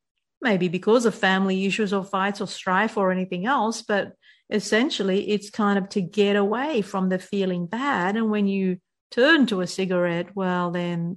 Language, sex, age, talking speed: English, female, 50-69, 175 wpm